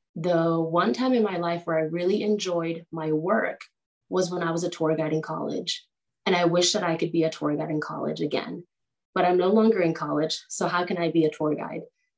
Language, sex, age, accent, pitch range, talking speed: English, female, 20-39, American, 155-175 Hz, 235 wpm